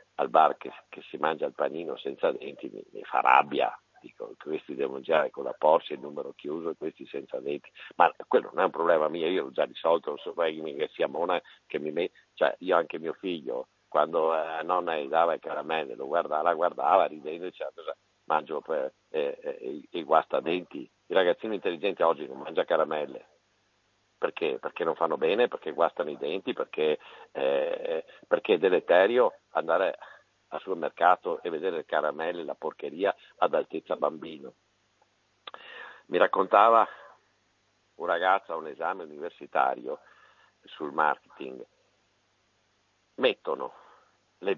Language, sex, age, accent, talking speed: Italian, male, 50-69, native, 165 wpm